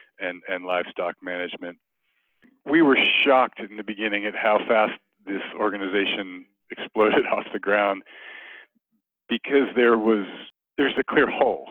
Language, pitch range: English, 95-115 Hz